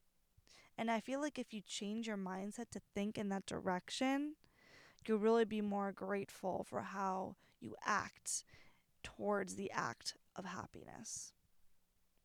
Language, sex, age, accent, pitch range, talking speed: English, female, 20-39, American, 200-265 Hz, 135 wpm